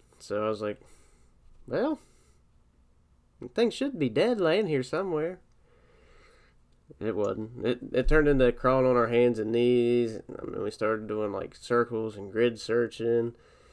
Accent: American